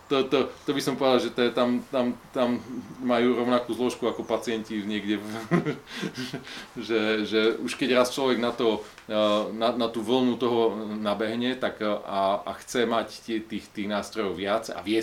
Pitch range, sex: 105-120 Hz, male